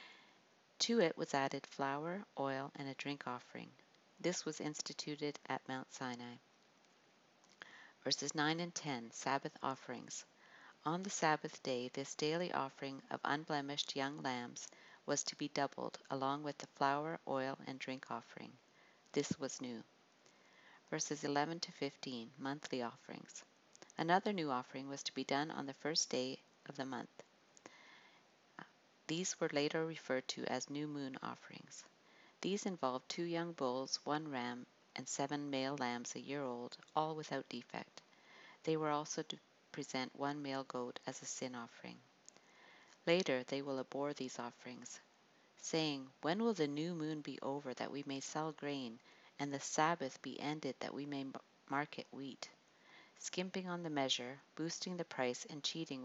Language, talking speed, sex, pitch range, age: English, 155 wpm, female, 130-155 Hz, 50-69